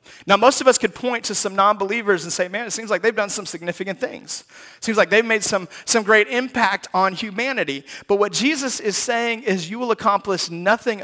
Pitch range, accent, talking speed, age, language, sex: 155-215 Hz, American, 215 wpm, 30-49, English, male